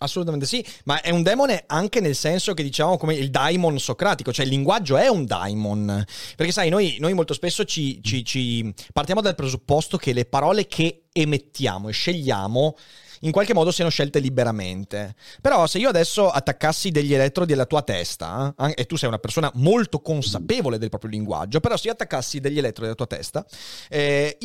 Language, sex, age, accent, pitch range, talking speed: Italian, male, 30-49, native, 125-185 Hz, 190 wpm